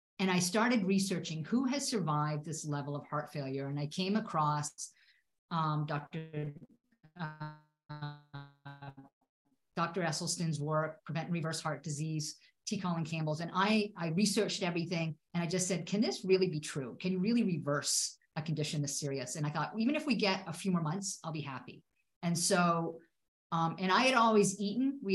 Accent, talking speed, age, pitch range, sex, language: American, 175 wpm, 50-69, 155-195 Hz, female, English